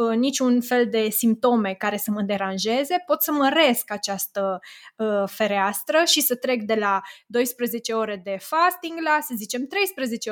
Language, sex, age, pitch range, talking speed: Romanian, female, 20-39, 210-255 Hz, 150 wpm